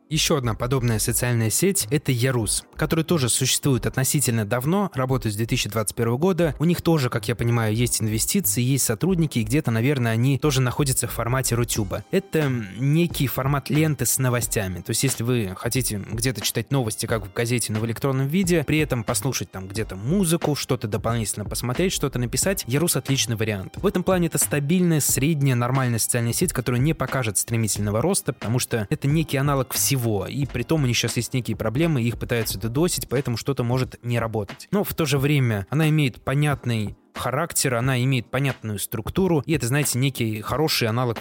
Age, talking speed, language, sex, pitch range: 20-39, 185 wpm, Russian, male, 115-150 Hz